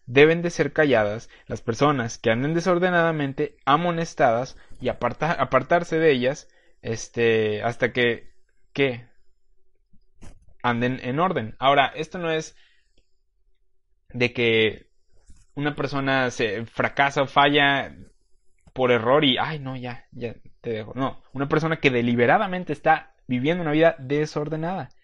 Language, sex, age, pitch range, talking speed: Spanish, male, 20-39, 125-155 Hz, 125 wpm